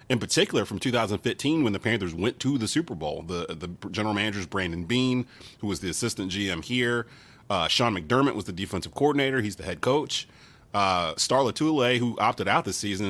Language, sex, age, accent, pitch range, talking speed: English, male, 30-49, American, 95-120 Hz, 200 wpm